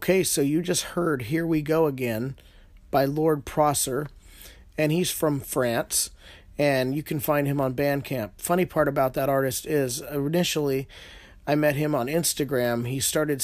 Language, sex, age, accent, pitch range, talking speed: English, male, 30-49, American, 120-145 Hz, 165 wpm